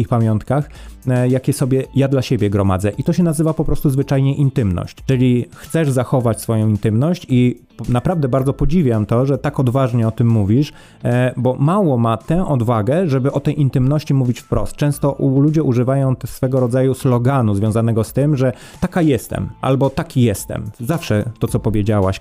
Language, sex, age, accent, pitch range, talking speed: Polish, male, 30-49, native, 115-150 Hz, 165 wpm